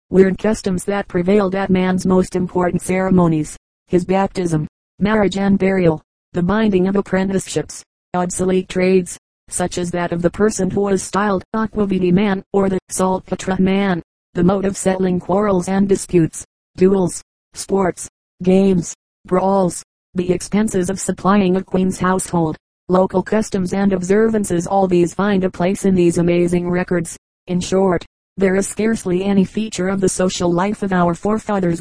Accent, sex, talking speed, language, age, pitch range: American, female, 155 wpm, English, 30-49, 180-195 Hz